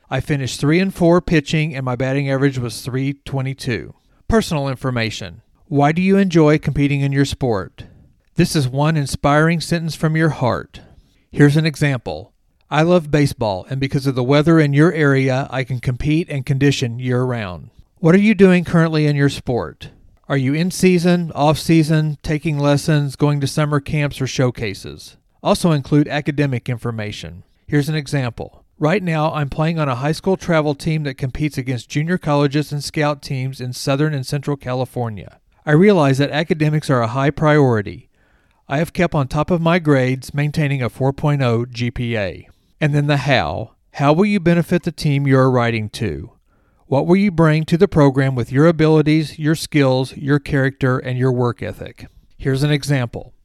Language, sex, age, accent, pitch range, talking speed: English, male, 40-59, American, 130-155 Hz, 170 wpm